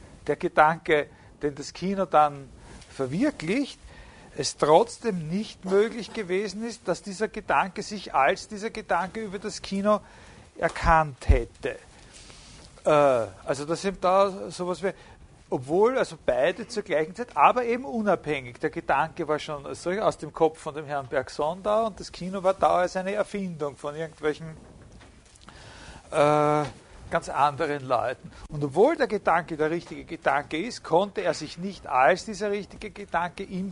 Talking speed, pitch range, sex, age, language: 150 wpm, 145-195 Hz, male, 50-69, German